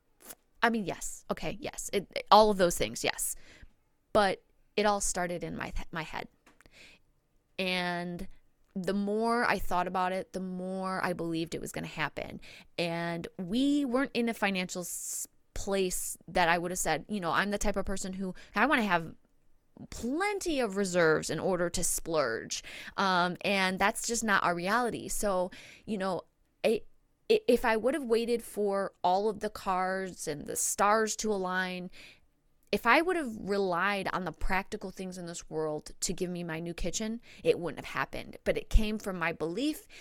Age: 20-39